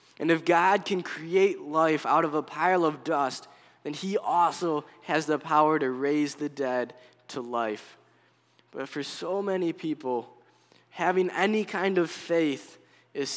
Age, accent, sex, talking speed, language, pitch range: 10-29, American, male, 155 wpm, English, 145-180 Hz